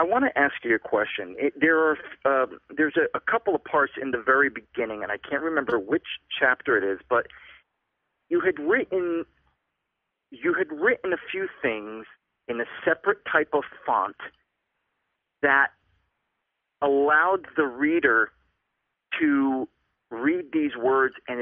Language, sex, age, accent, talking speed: English, male, 40-59, American, 150 wpm